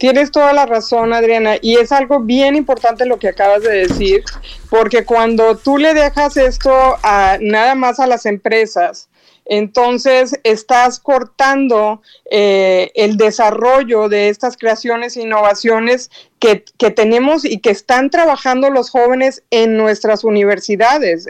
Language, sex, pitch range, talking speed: Spanish, female, 215-255 Hz, 140 wpm